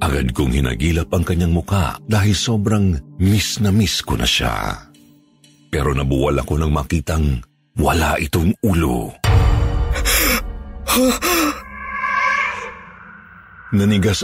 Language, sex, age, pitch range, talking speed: Filipino, male, 50-69, 80-105 Hz, 95 wpm